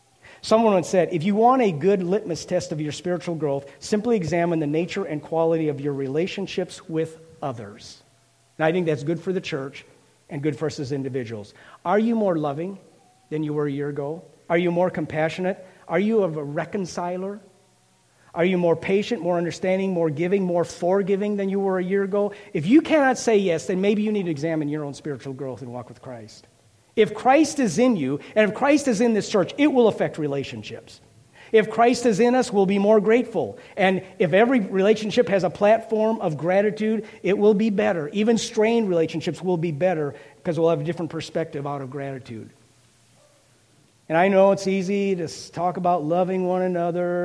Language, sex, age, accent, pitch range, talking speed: English, male, 40-59, American, 145-200 Hz, 200 wpm